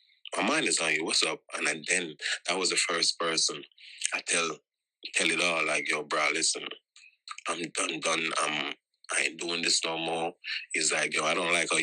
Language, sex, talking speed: English, male, 210 wpm